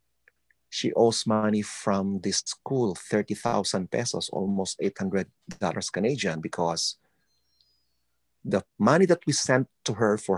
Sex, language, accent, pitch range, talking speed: male, English, Filipino, 95-125 Hz, 115 wpm